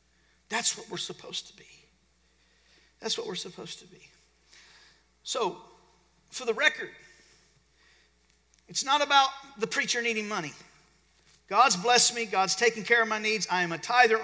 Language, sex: English, male